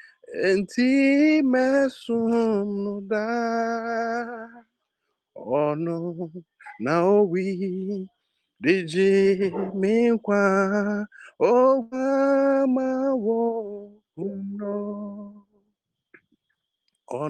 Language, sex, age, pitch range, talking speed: English, male, 50-69, 195-255 Hz, 50 wpm